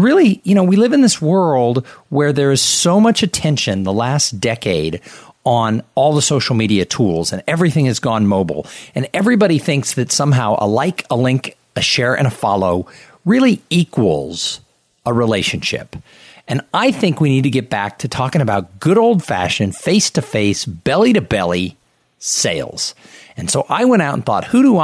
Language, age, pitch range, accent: English, 50-69, 115-175 Hz, American